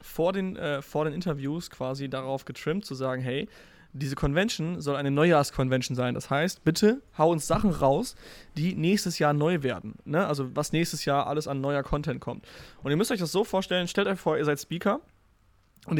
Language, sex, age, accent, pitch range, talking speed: German, male, 20-39, German, 140-170 Hz, 205 wpm